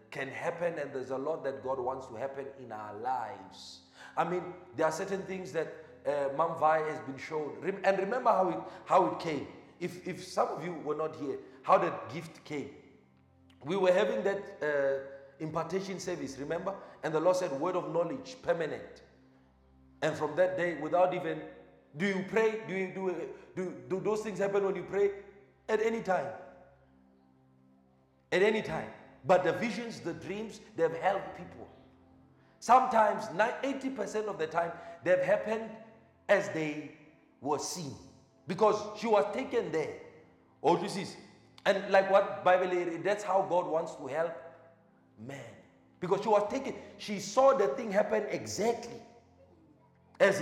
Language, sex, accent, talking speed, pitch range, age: English, male, South African, 170 wpm, 140-200 Hz, 40-59